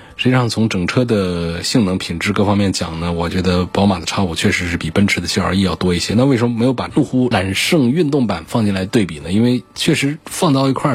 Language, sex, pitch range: Chinese, male, 95-120 Hz